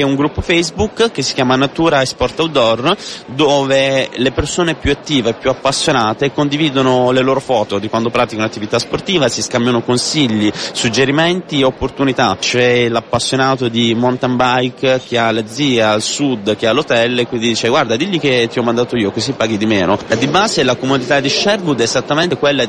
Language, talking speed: Italian, 180 wpm